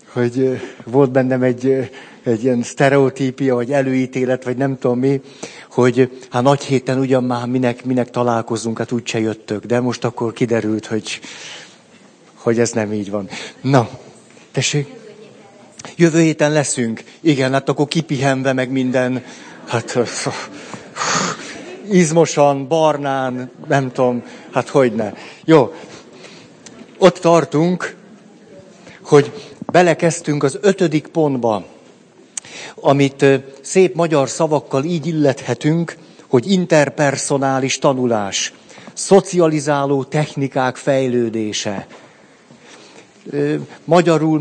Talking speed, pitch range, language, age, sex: 105 wpm, 125-155 Hz, Hungarian, 60-79, male